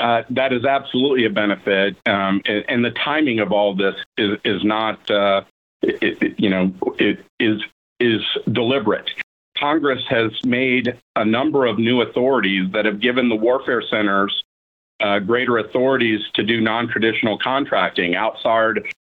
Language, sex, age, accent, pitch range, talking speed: English, male, 50-69, American, 105-125 Hz, 150 wpm